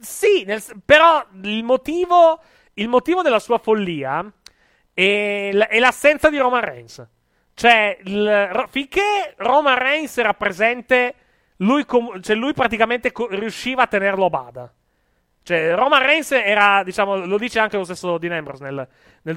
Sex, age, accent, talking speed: male, 30-49, native, 155 wpm